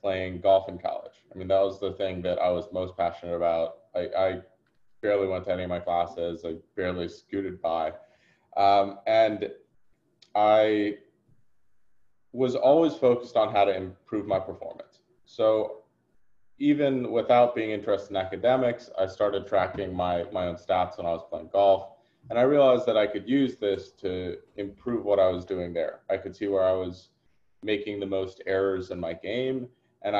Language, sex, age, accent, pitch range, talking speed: English, male, 20-39, American, 95-110 Hz, 175 wpm